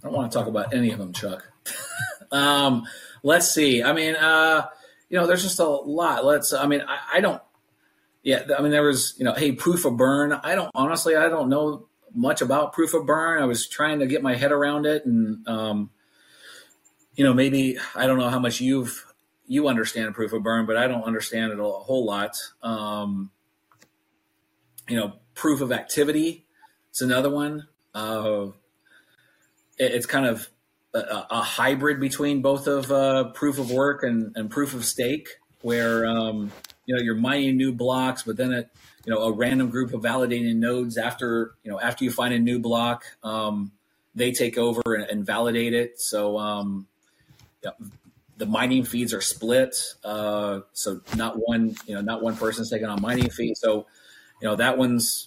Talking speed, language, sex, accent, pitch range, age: 190 wpm, English, male, American, 110-140 Hz, 30-49